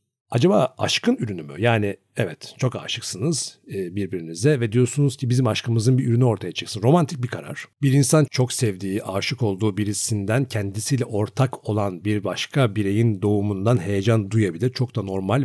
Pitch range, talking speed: 105-135 Hz, 155 wpm